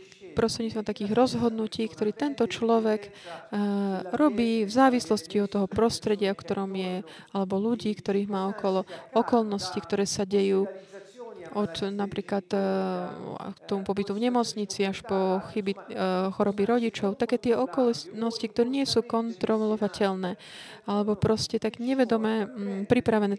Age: 20-39